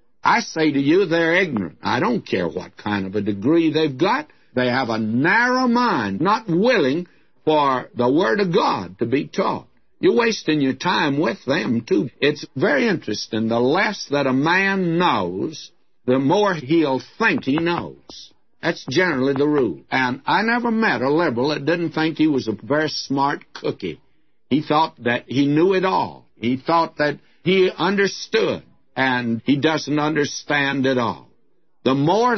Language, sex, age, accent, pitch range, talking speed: English, male, 60-79, American, 125-170 Hz, 170 wpm